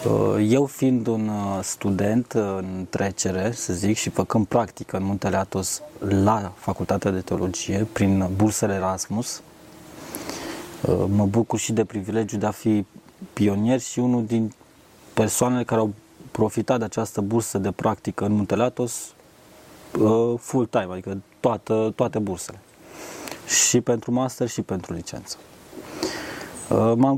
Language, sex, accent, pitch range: Romanian, male, native, 100-125 Hz